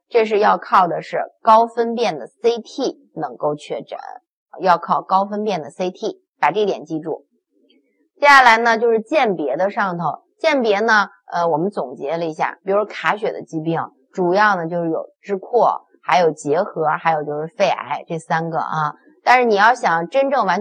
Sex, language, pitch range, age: female, Chinese, 165-230 Hz, 20-39